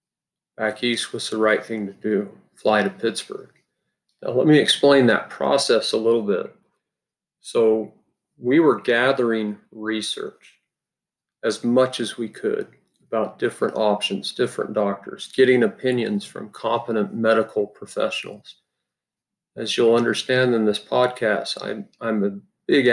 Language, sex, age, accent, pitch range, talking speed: English, male, 40-59, American, 105-120 Hz, 135 wpm